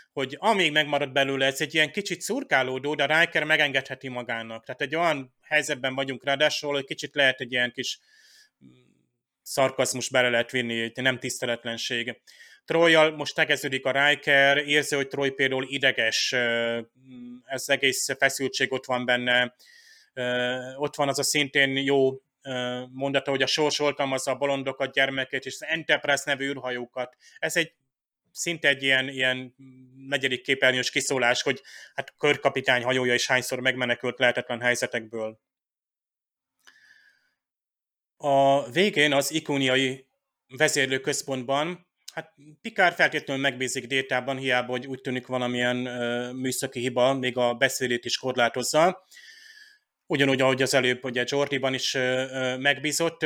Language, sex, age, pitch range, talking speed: Hungarian, male, 30-49, 125-145 Hz, 130 wpm